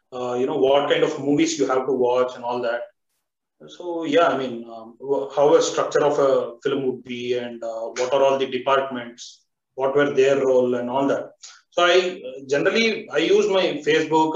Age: 30-49